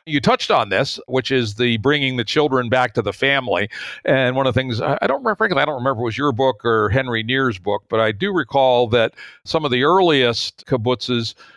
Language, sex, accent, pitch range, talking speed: English, male, American, 115-140 Hz, 230 wpm